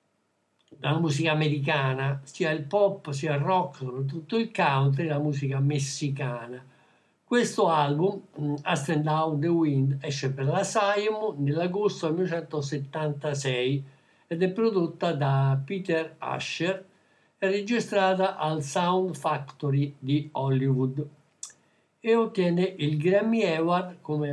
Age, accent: 60-79, native